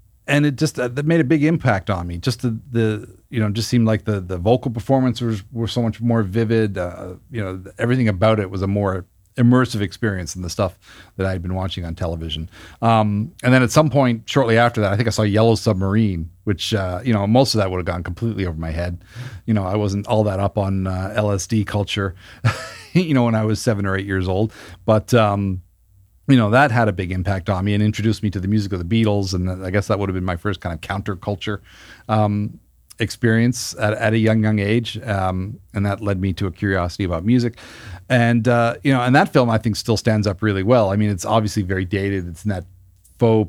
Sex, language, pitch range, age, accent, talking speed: male, English, 95-115 Hz, 40-59, American, 240 wpm